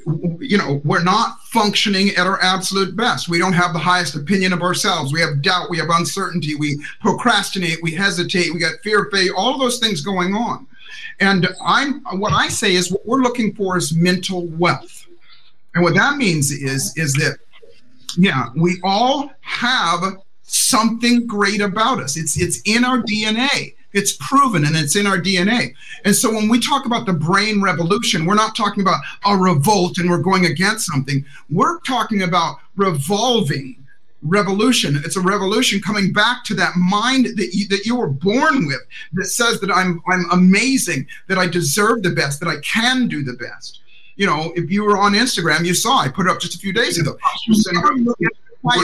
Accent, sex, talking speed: American, male, 185 wpm